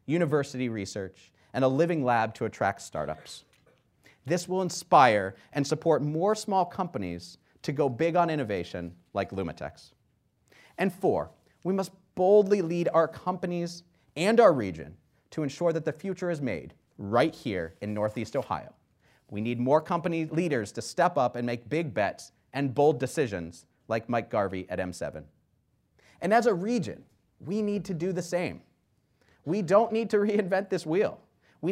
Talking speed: 160 wpm